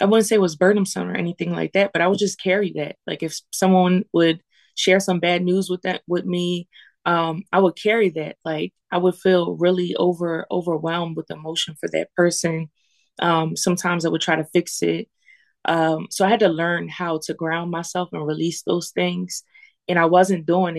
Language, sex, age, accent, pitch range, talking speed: English, female, 20-39, American, 160-185 Hz, 205 wpm